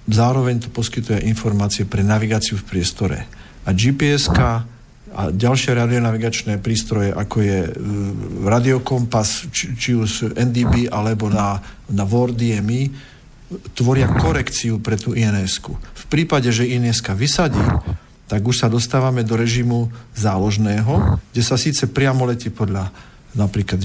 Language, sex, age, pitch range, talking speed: Slovak, male, 50-69, 110-130 Hz, 125 wpm